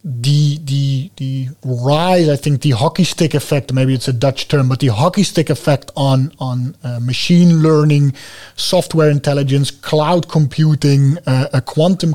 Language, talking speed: English, 160 wpm